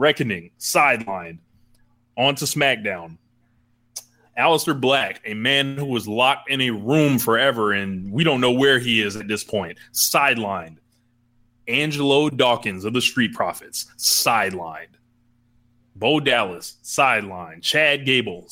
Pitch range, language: 120-145 Hz, English